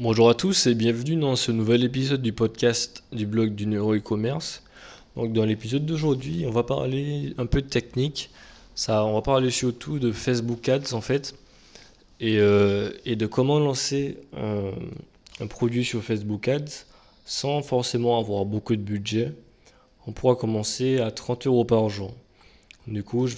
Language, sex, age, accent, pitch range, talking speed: French, male, 20-39, French, 110-130 Hz, 170 wpm